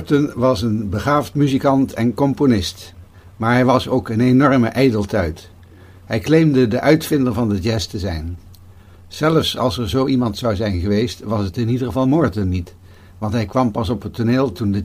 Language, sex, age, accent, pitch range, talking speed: Dutch, male, 60-79, Dutch, 95-130 Hz, 190 wpm